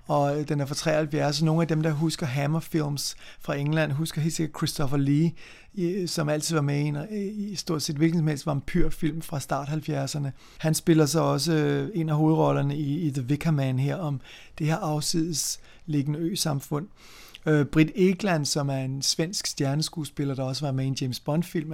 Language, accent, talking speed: Danish, native, 180 wpm